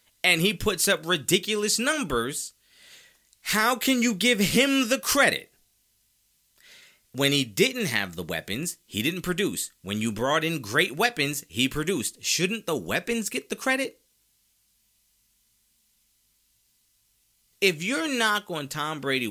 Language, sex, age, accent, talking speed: English, male, 30-49, American, 130 wpm